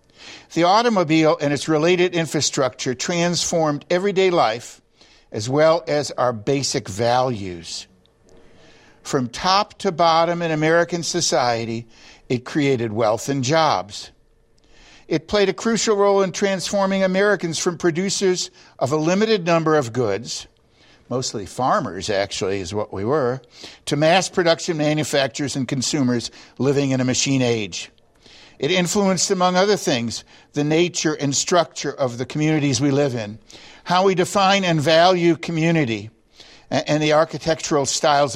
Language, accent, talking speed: English, American, 135 wpm